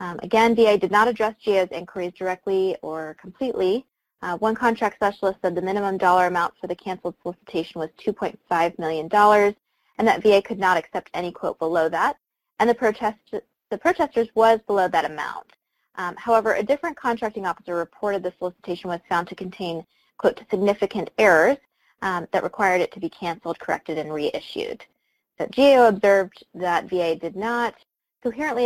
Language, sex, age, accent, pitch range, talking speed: English, female, 20-39, American, 175-225 Hz, 170 wpm